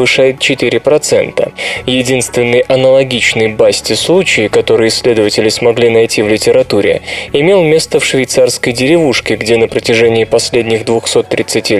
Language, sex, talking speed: Russian, male, 100 wpm